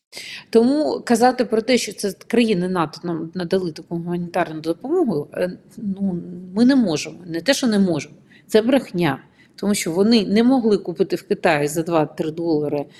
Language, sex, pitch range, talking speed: Ukrainian, female, 170-225 Hz, 160 wpm